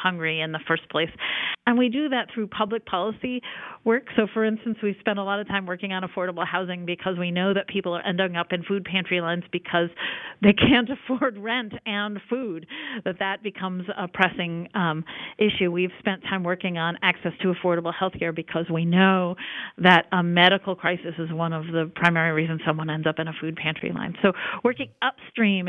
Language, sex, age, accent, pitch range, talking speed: English, female, 50-69, American, 175-220 Hz, 200 wpm